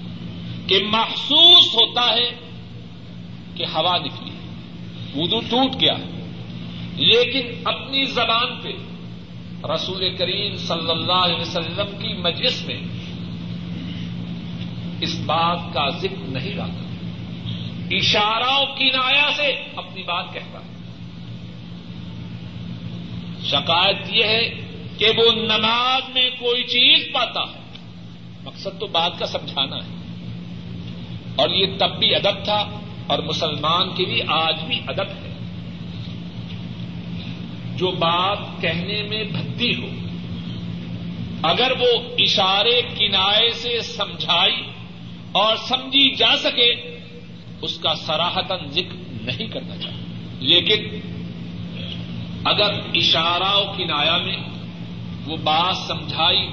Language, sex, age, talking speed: Urdu, male, 50-69, 105 wpm